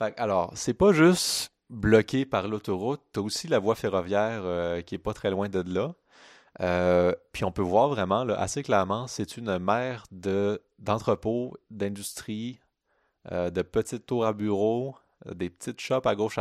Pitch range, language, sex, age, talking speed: 90-115 Hz, French, male, 30-49, 180 wpm